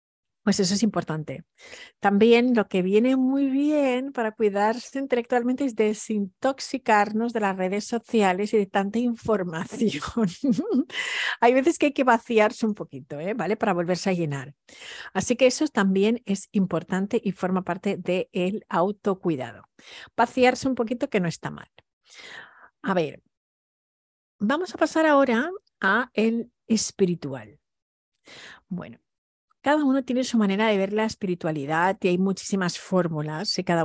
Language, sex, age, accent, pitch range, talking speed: Spanish, female, 50-69, Spanish, 180-245 Hz, 140 wpm